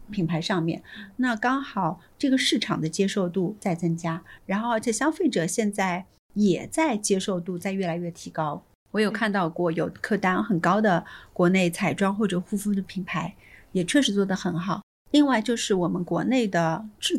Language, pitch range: Chinese, 185-235 Hz